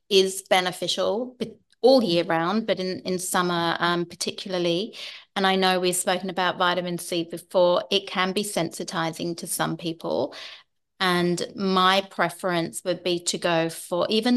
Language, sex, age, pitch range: English, female, 30-49, 170-195 Hz